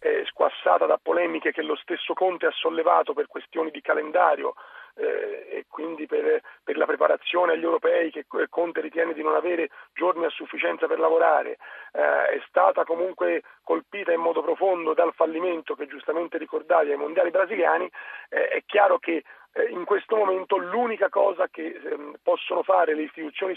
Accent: native